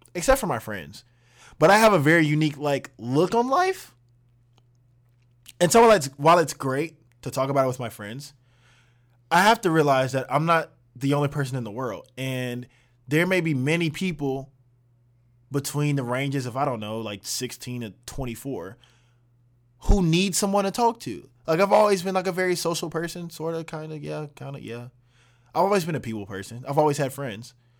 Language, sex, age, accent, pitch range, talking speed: English, male, 20-39, American, 120-155 Hz, 195 wpm